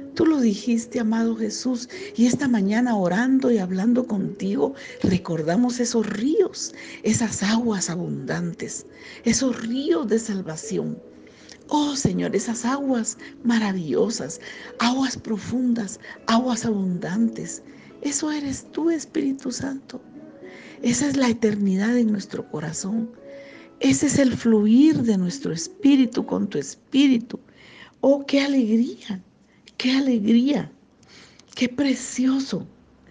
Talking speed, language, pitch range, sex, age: 110 wpm, Spanish, 190-255 Hz, female, 50-69